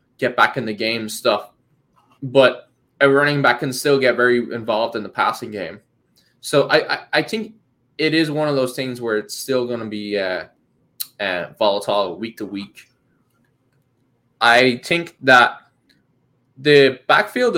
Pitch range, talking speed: 115-145 Hz, 160 wpm